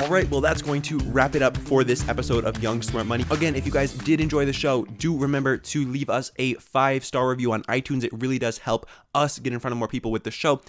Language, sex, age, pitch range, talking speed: English, male, 20-39, 115-145 Hz, 270 wpm